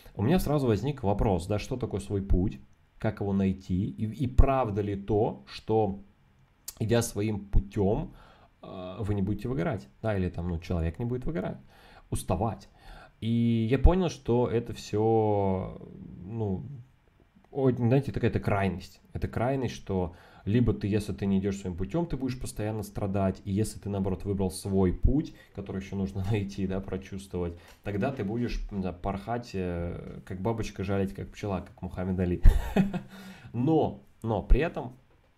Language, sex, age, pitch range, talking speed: Russian, male, 20-39, 95-115 Hz, 150 wpm